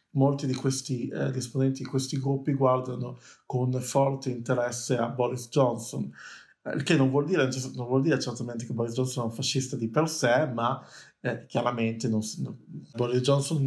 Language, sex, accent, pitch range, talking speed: Italian, male, native, 125-140 Hz, 185 wpm